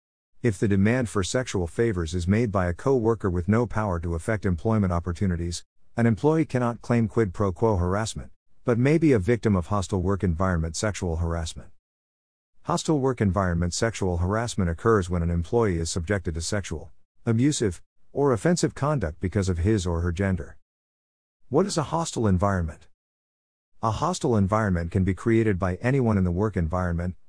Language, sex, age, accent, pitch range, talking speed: English, male, 50-69, American, 85-115 Hz, 170 wpm